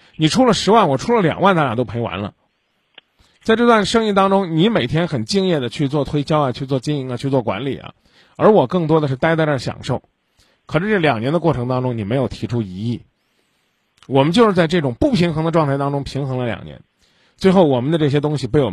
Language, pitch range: Chinese, 130-175 Hz